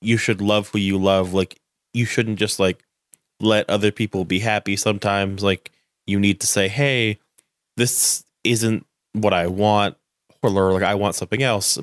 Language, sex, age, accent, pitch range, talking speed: English, male, 20-39, American, 100-120 Hz, 170 wpm